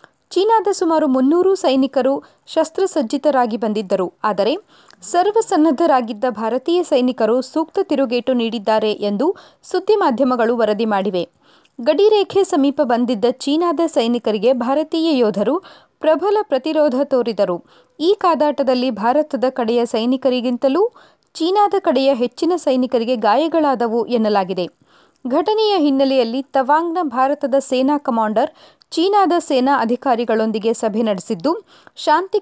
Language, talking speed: Kannada, 95 wpm